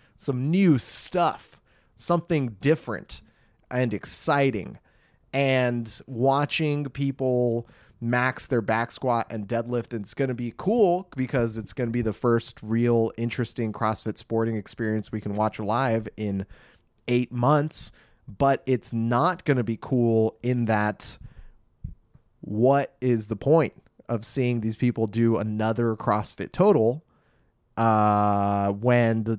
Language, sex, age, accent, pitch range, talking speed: English, male, 30-49, American, 115-150 Hz, 130 wpm